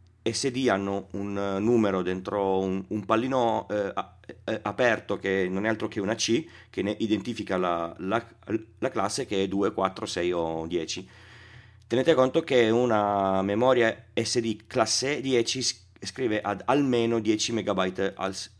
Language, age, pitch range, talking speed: Italian, 30-49, 95-115 Hz, 145 wpm